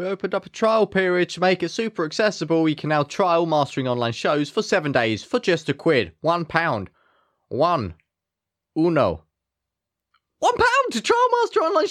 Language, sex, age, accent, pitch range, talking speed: English, male, 20-39, British, 130-220 Hz, 175 wpm